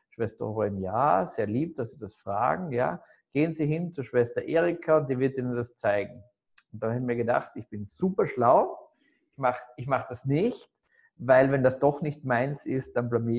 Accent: German